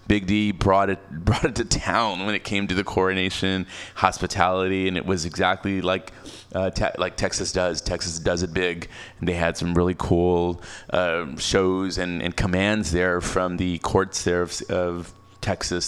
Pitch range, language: 90-105 Hz, English